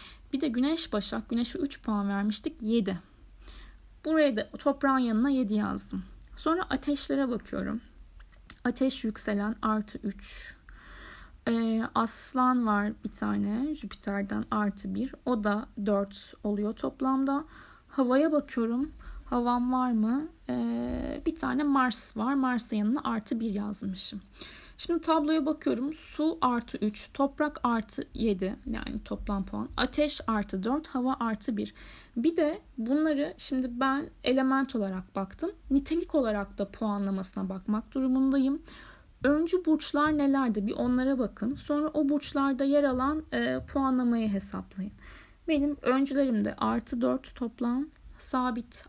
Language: Turkish